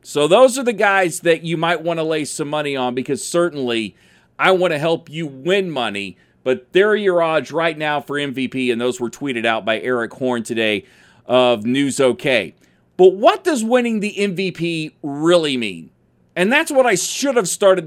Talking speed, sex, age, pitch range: 195 wpm, male, 40-59, 145-200 Hz